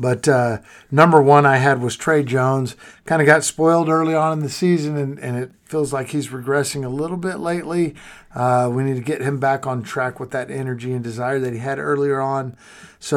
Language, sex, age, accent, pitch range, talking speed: English, male, 50-69, American, 125-160 Hz, 225 wpm